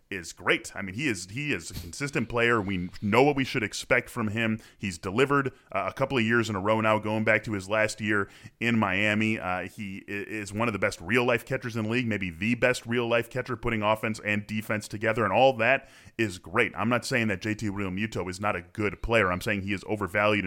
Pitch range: 105-125 Hz